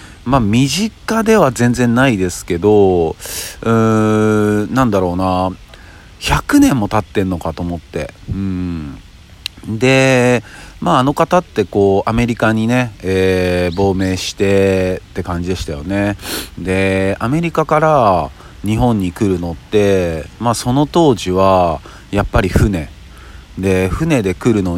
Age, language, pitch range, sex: 40-59, Japanese, 85-110 Hz, male